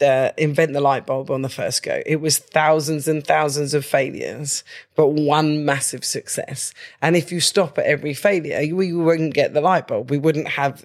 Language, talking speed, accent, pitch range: English, 200 wpm, British, 145-165 Hz